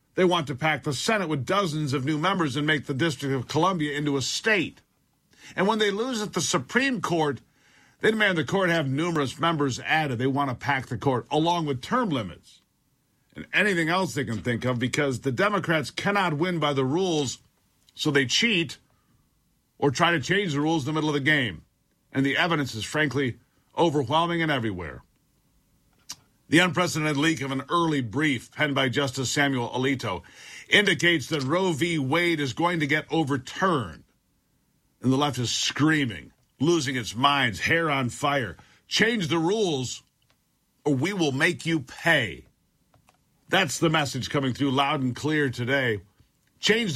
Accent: American